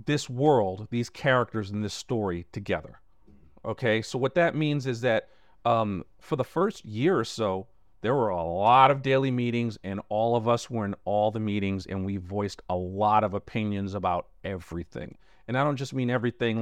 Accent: American